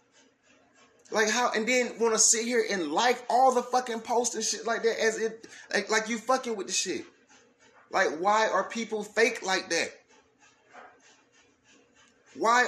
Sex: male